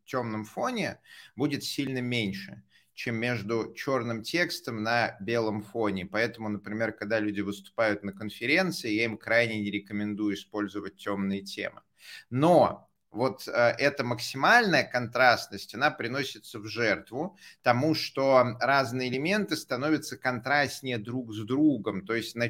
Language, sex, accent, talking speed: Russian, male, native, 130 wpm